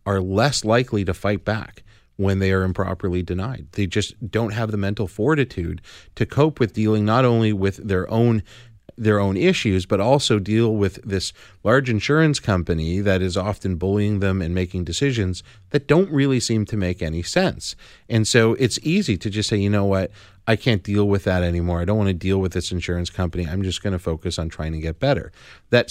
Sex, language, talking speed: male, English, 205 wpm